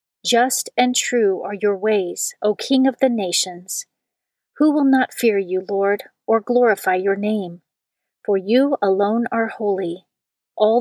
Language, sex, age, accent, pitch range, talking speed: English, female, 40-59, American, 195-245 Hz, 150 wpm